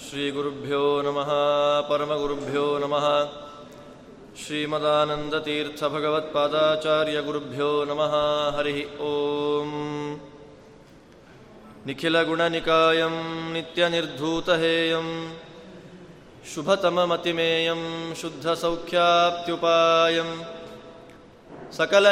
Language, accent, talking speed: Kannada, native, 35 wpm